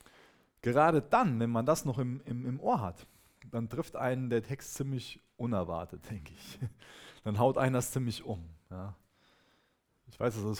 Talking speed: 175 wpm